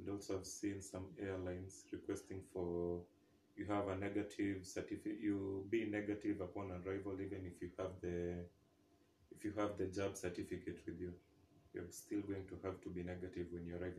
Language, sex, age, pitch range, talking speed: English, male, 30-49, 90-100 Hz, 180 wpm